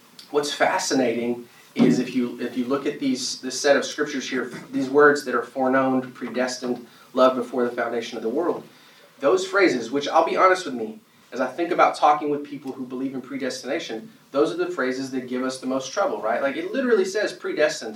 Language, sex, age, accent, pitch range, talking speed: English, male, 30-49, American, 120-185 Hz, 210 wpm